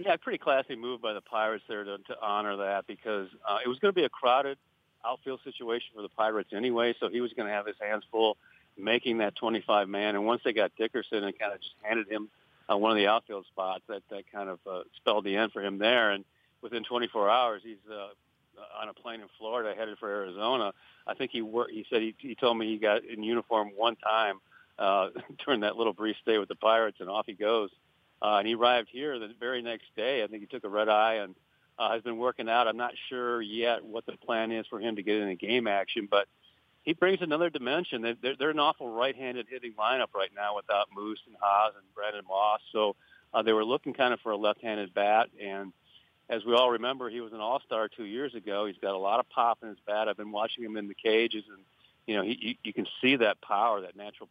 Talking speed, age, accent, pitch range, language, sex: 240 wpm, 50-69, American, 105-120 Hz, English, male